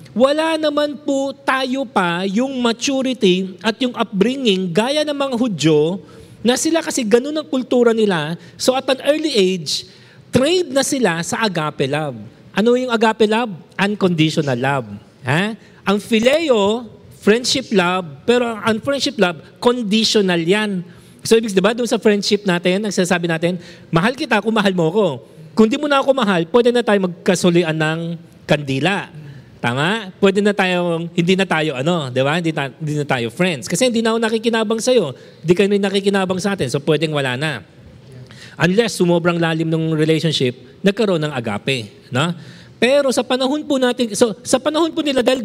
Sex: male